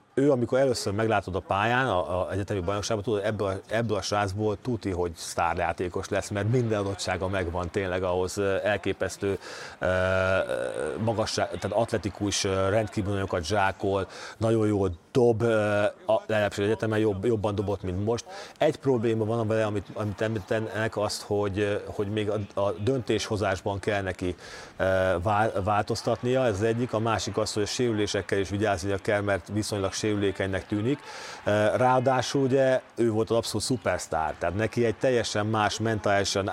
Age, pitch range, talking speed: 40-59, 100-115 Hz, 145 wpm